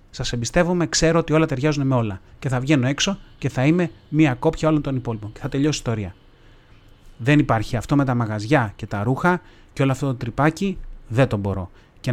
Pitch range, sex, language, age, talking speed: 115-155 Hz, male, Greek, 30-49, 215 wpm